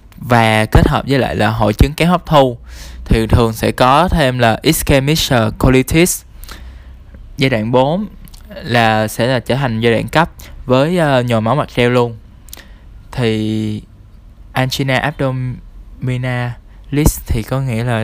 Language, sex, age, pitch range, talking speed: Vietnamese, male, 20-39, 110-135 Hz, 145 wpm